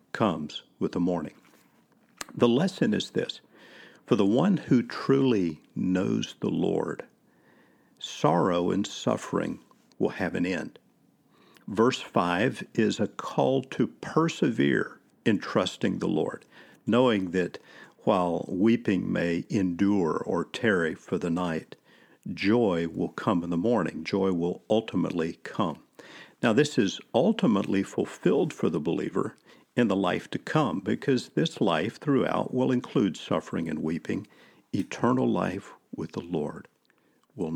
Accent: American